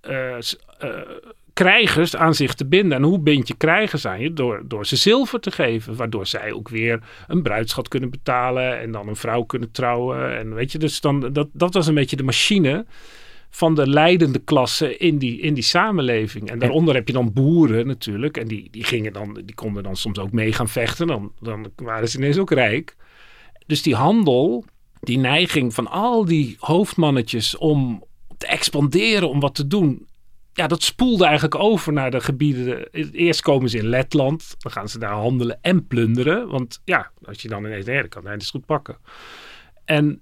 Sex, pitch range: male, 120-160 Hz